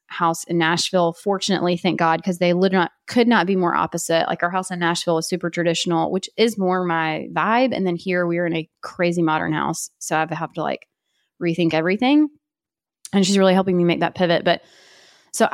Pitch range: 170-200 Hz